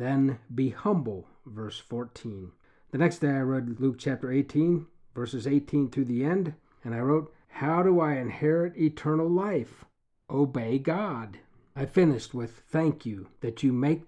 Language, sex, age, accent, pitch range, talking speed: English, male, 50-69, American, 125-160 Hz, 160 wpm